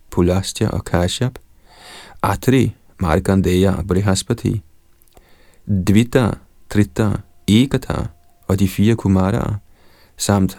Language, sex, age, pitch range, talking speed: Danish, male, 40-59, 95-110 Hz, 85 wpm